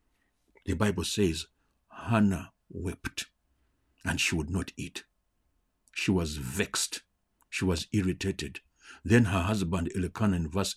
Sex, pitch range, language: male, 85-120 Hz, English